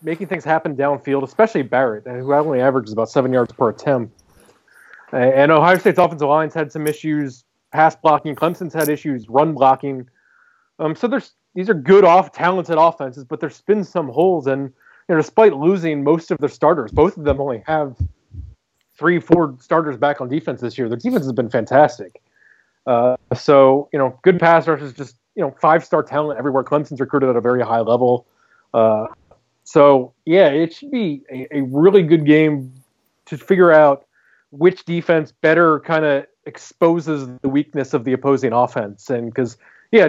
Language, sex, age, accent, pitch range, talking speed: English, male, 30-49, American, 130-160 Hz, 180 wpm